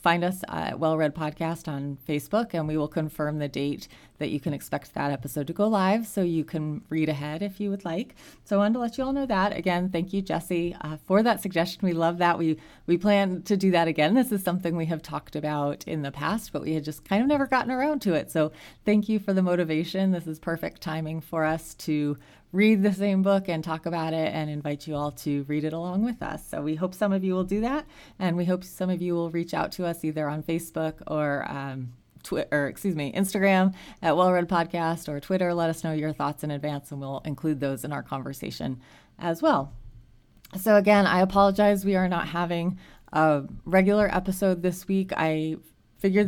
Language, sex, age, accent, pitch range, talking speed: English, female, 30-49, American, 155-195 Hz, 230 wpm